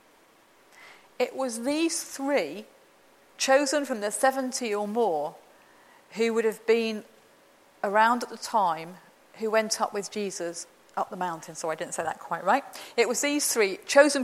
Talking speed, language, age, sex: 160 wpm, English, 40-59, female